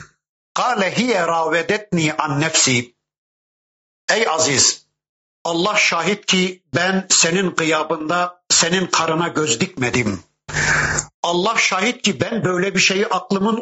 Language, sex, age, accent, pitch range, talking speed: Turkish, male, 60-79, native, 155-195 Hz, 95 wpm